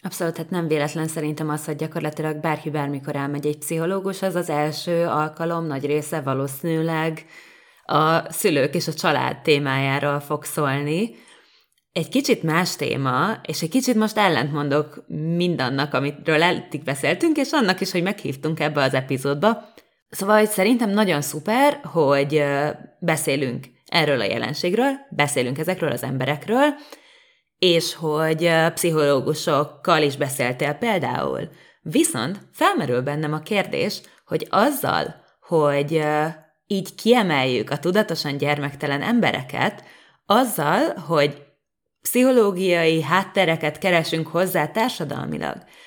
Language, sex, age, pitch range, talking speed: Hungarian, female, 20-39, 150-200 Hz, 115 wpm